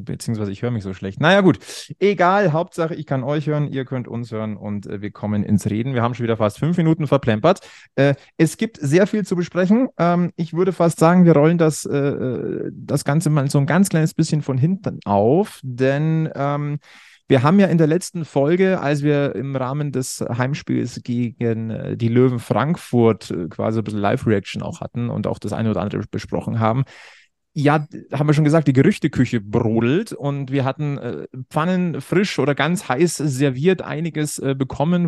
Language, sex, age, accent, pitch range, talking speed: German, male, 30-49, German, 120-160 Hz, 190 wpm